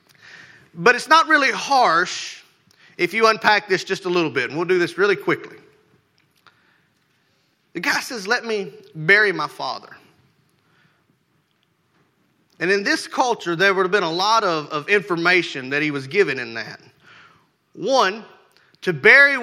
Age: 30-49